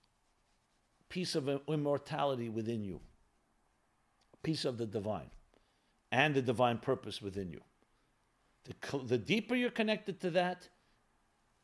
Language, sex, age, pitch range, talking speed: English, male, 50-69, 115-160 Hz, 120 wpm